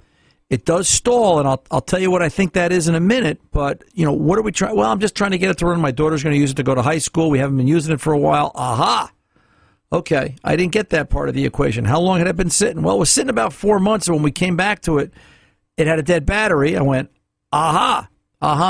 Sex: male